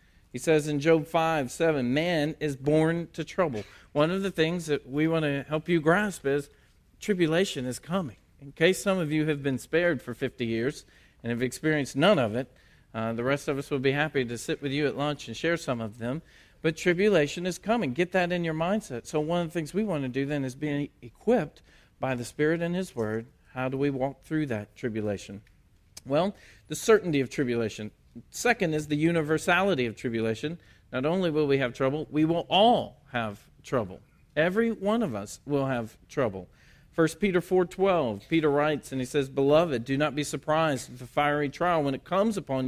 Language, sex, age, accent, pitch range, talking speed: English, male, 40-59, American, 130-170 Hz, 210 wpm